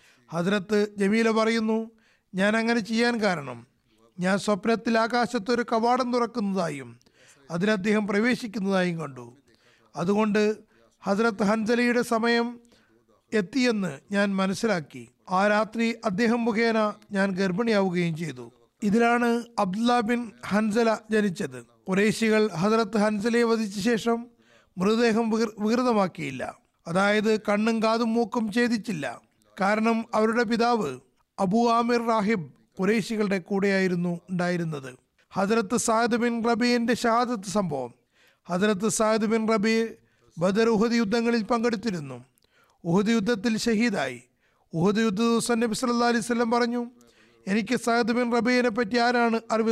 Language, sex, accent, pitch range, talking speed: Malayalam, male, native, 185-235 Hz, 100 wpm